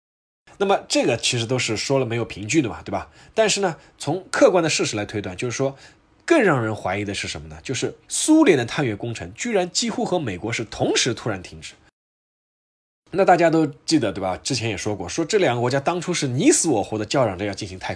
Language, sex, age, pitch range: Chinese, male, 20-39, 100-145 Hz